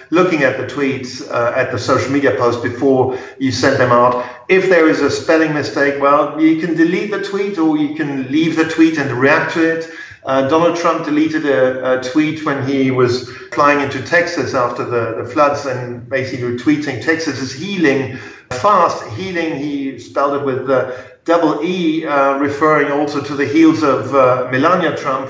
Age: 50-69